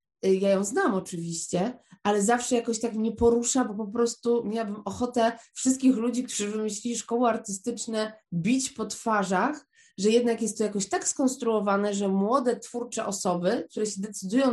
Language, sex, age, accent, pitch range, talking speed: Polish, female, 20-39, native, 200-245 Hz, 155 wpm